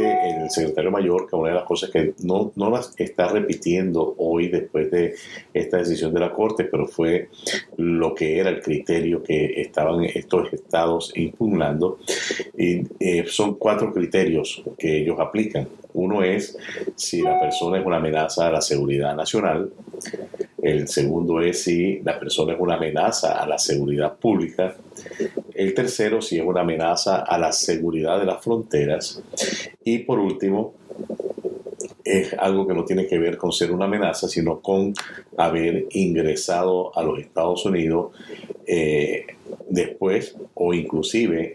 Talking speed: 150 wpm